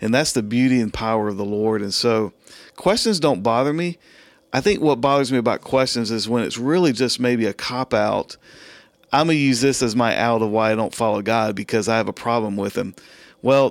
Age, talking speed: 40-59, 230 wpm